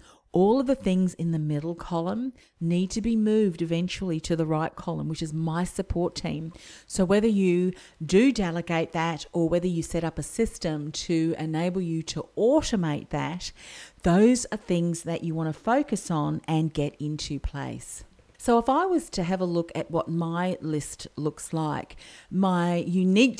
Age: 40-59